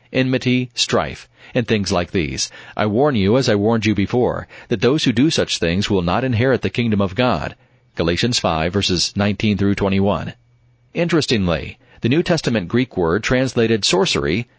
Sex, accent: male, American